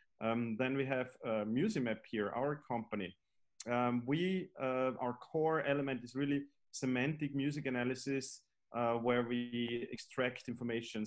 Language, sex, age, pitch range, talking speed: English, male, 30-49, 110-135 Hz, 135 wpm